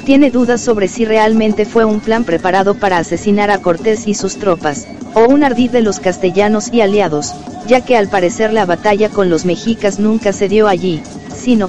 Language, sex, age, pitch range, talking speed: Spanish, female, 50-69, 190-230 Hz, 195 wpm